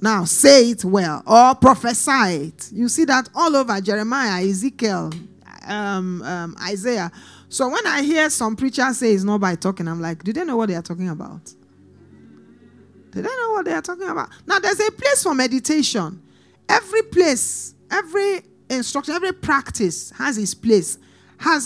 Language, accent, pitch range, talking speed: English, Nigerian, 210-315 Hz, 170 wpm